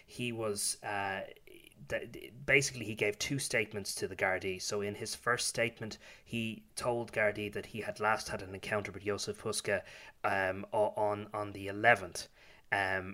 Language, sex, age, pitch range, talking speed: English, male, 20-39, 95-110 Hz, 160 wpm